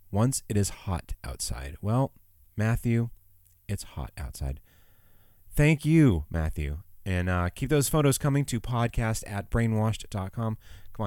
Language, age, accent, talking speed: German, 30-49, American, 130 wpm